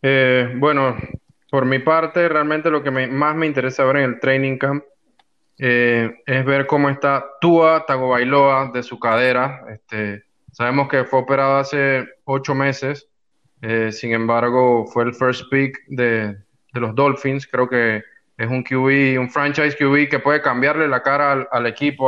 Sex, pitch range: male, 125-150 Hz